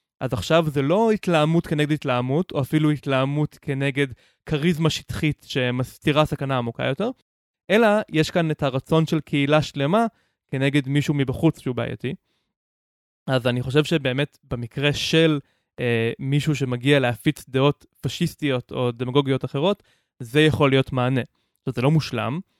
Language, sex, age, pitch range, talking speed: Hebrew, male, 20-39, 130-155 Hz, 140 wpm